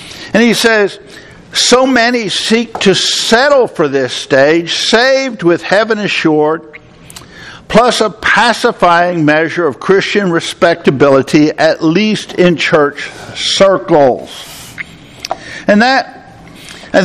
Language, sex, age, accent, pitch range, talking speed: English, male, 60-79, American, 165-215 Hz, 105 wpm